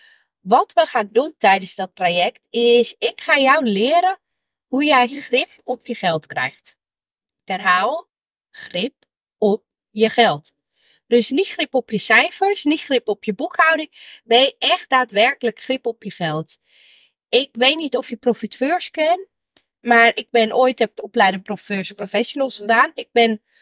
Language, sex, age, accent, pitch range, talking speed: Dutch, female, 30-49, Dutch, 225-350 Hz, 150 wpm